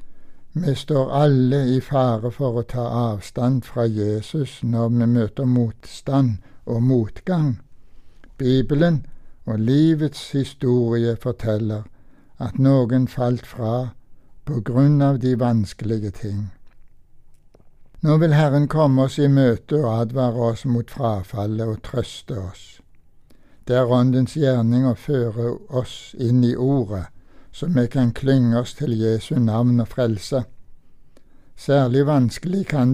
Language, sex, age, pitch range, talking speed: English, male, 60-79, 115-140 Hz, 120 wpm